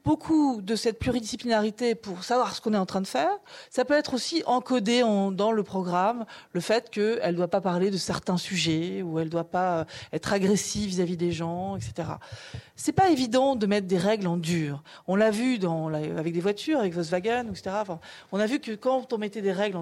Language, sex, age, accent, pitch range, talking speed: French, female, 40-59, French, 180-240 Hz, 225 wpm